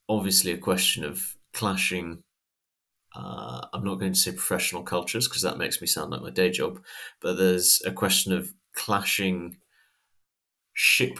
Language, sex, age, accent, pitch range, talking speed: English, male, 30-49, British, 90-95 Hz, 155 wpm